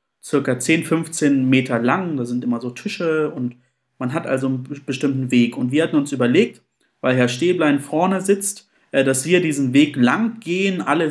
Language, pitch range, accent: German, 140-190 Hz, German